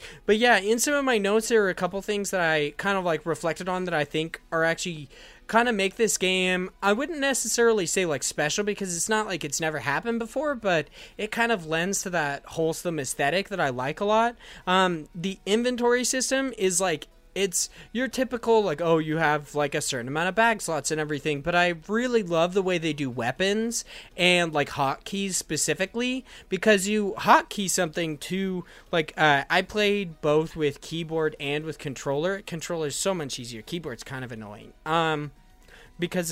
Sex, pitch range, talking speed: male, 150-200 Hz, 195 wpm